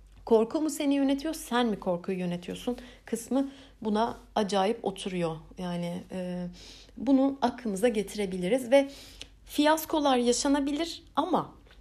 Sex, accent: female, native